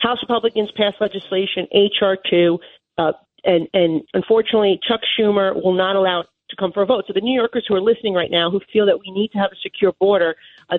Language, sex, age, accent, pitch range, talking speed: English, female, 40-59, American, 185-225 Hz, 220 wpm